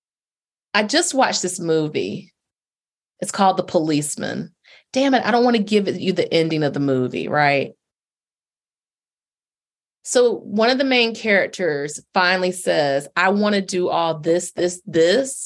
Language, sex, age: English, female, 30-49